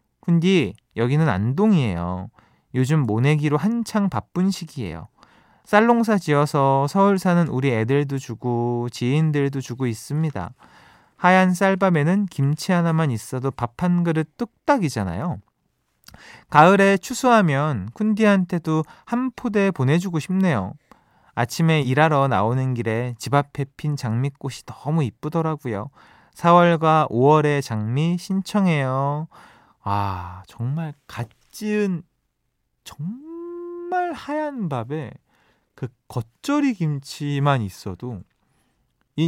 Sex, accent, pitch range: male, native, 115-175 Hz